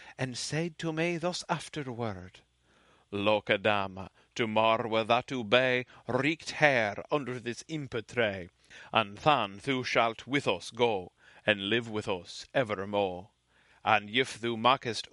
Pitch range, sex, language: 105-130 Hz, male, English